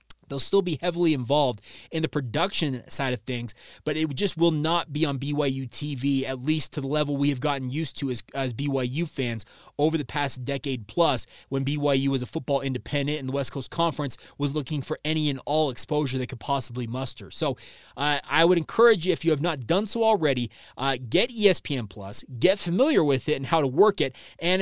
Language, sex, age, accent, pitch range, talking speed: English, male, 20-39, American, 135-180 Hz, 215 wpm